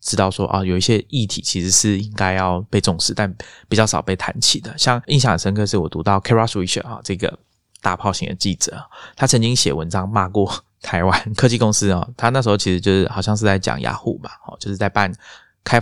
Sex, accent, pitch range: male, native, 95-110 Hz